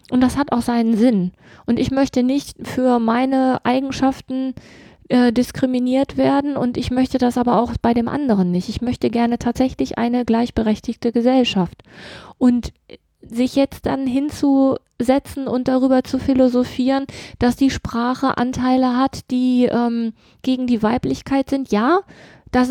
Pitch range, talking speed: 220-255 Hz, 145 wpm